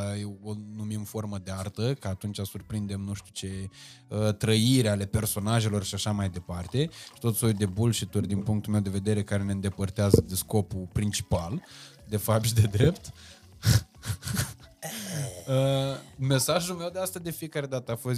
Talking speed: 160 wpm